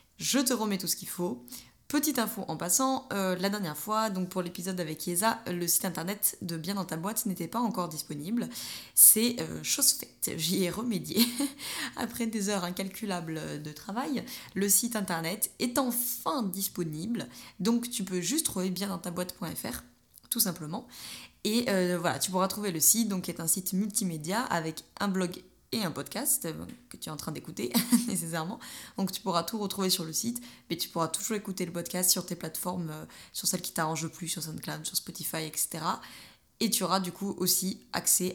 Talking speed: 200 wpm